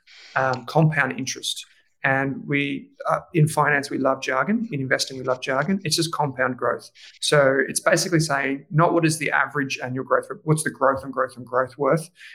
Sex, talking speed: male, 190 wpm